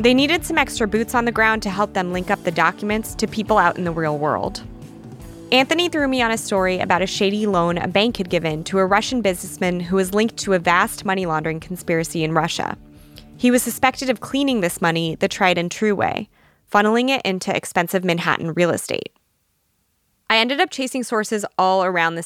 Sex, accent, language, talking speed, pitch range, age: female, American, English, 210 wpm, 175-225 Hz, 20-39